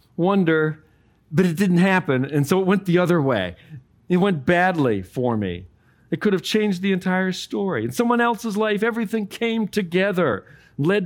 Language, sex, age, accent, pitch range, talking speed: English, male, 40-59, American, 130-205 Hz, 175 wpm